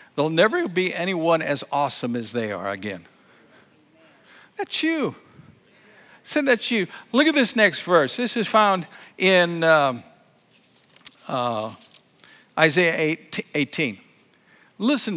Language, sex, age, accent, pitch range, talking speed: English, male, 60-79, American, 175-275 Hz, 125 wpm